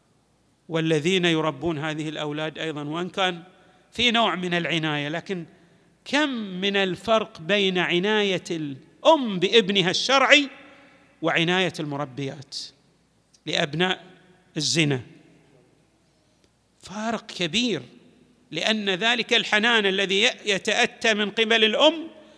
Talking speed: 90 wpm